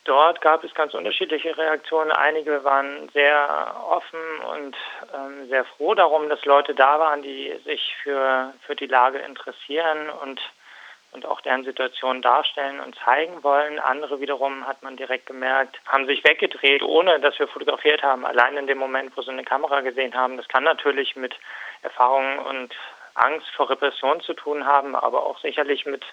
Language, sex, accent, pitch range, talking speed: German, male, German, 130-150 Hz, 170 wpm